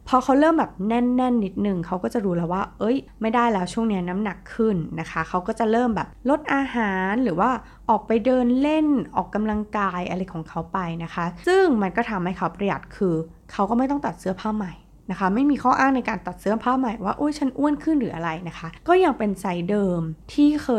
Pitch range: 175-240 Hz